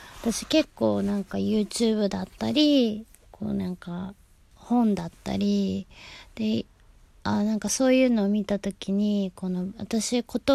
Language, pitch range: Japanese, 175-230 Hz